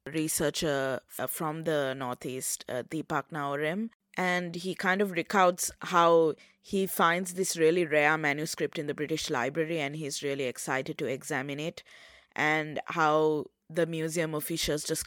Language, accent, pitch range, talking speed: English, Indian, 145-170 Hz, 145 wpm